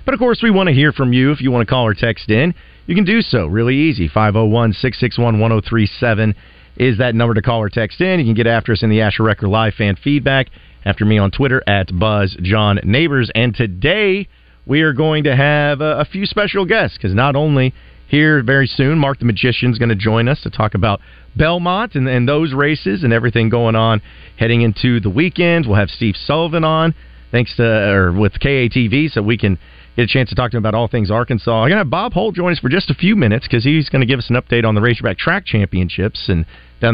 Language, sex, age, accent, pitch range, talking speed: English, male, 40-59, American, 105-140 Hz, 235 wpm